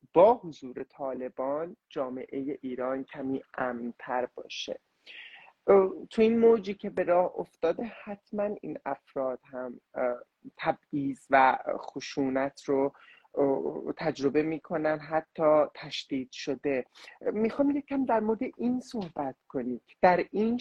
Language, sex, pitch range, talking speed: English, male, 140-190 Hz, 110 wpm